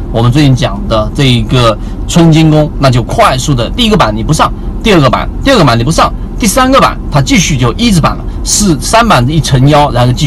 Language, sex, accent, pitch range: Chinese, male, native, 120-170 Hz